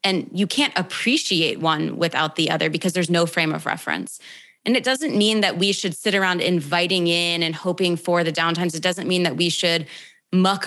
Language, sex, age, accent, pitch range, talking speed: English, female, 20-39, American, 165-205 Hz, 210 wpm